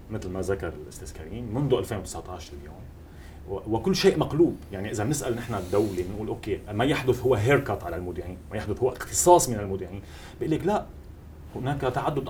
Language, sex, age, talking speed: Arabic, male, 30-49, 160 wpm